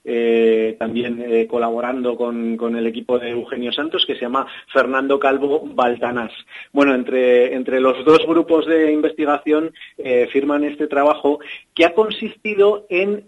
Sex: male